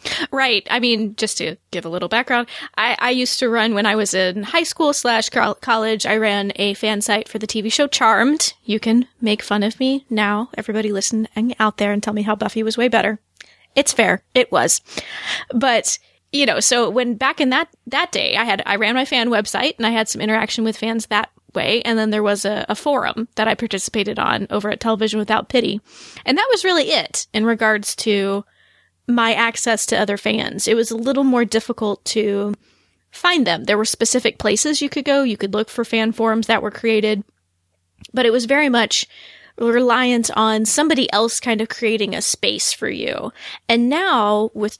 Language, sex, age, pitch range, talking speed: English, female, 20-39, 210-250 Hz, 210 wpm